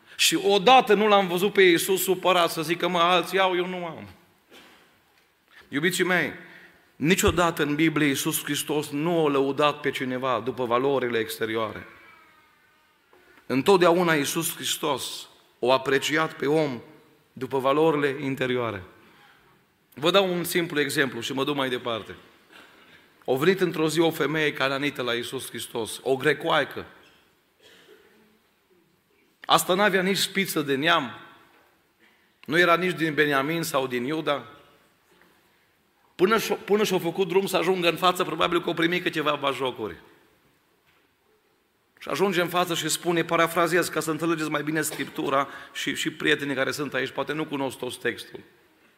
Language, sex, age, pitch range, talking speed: Romanian, male, 40-59, 135-175 Hz, 145 wpm